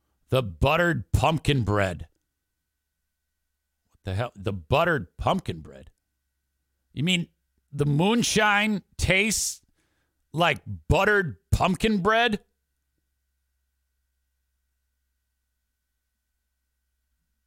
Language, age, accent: English, 50-69, American